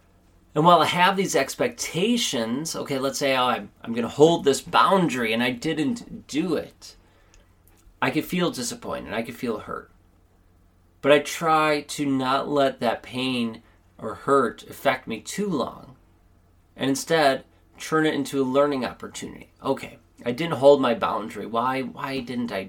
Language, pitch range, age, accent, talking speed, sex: English, 85-145 Hz, 30-49, American, 165 wpm, male